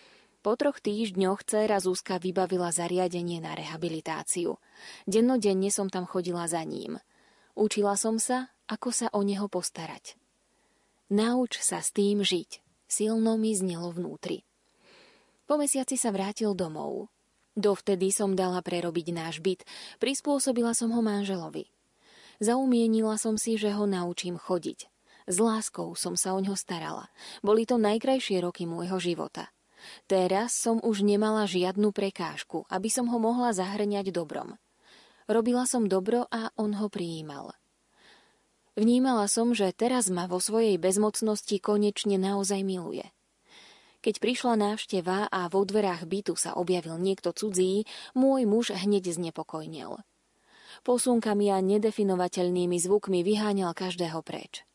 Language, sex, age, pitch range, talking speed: Slovak, female, 20-39, 185-225 Hz, 130 wpm